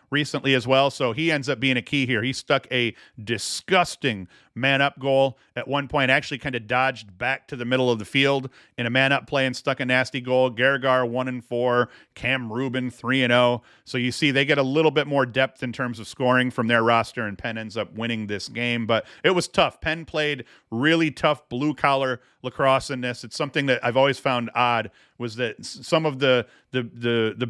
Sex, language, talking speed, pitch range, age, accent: male, English, 210 wpm, 115-135 Hz, 40-59, American